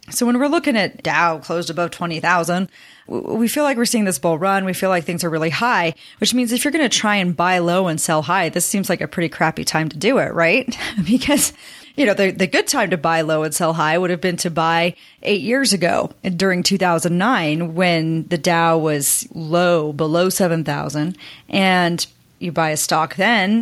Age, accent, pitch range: 30-49, American, 165-210 Hz